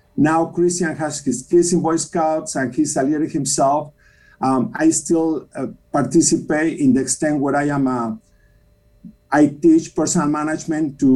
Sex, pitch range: male, 130-170 Hz